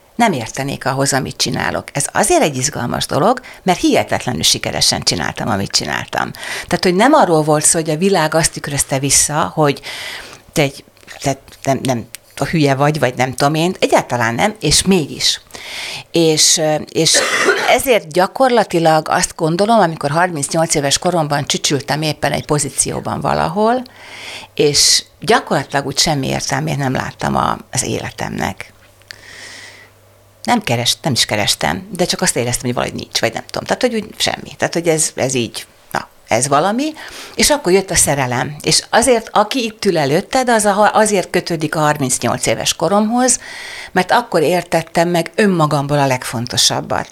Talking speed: 150 wpm